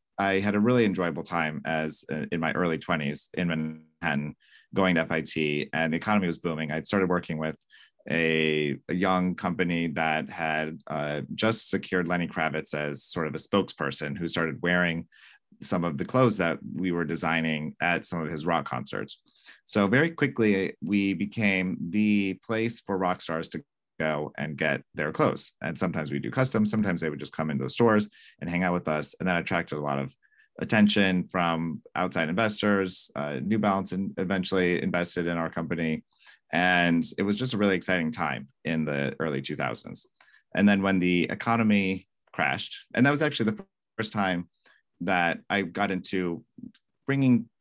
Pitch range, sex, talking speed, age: 80-100 Hz, male, 180 wpm, 30-49